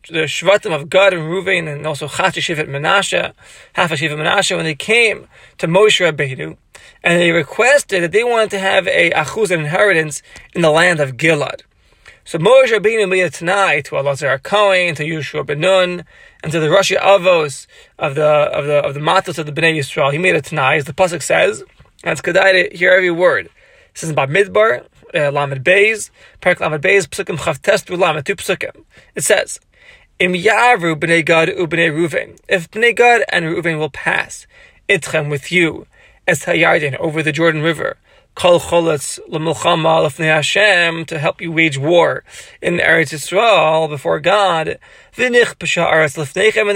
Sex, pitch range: male, 155-195 Hz